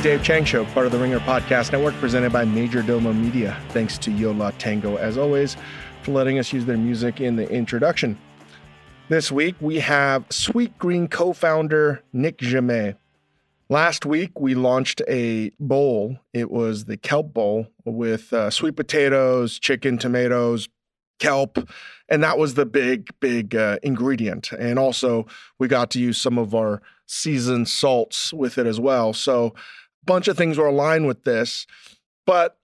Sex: male